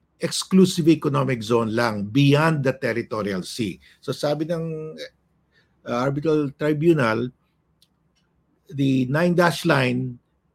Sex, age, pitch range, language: male, 50-69, 125-155 Hz, English